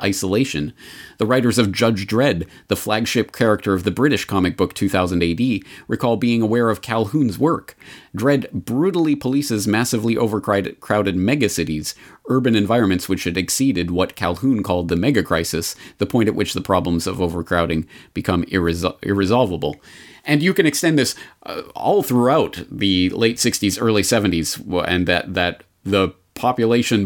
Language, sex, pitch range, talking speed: English, male, 95-120 Hz, 150 wpm